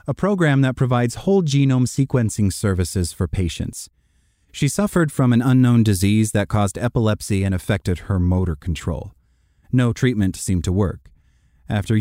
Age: 30-49